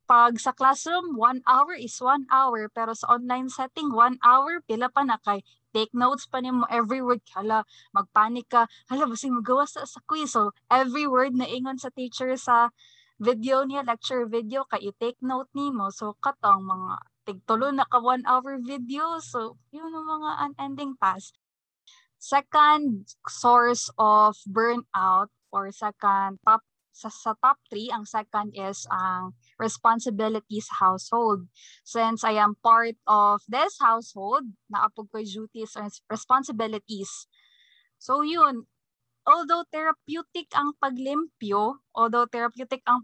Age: 20-39